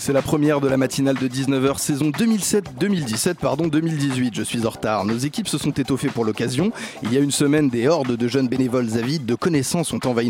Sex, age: male, 30-49